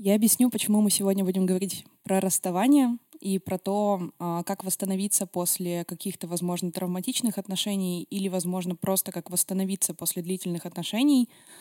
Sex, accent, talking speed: female, native, 140 wpm